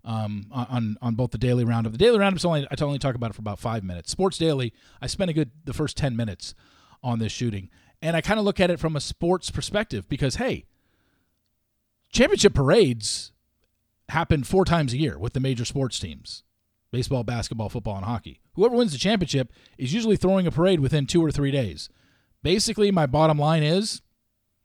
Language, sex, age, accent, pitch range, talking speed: English, male, 40-59, American, 105-150 Hz, 200 wpm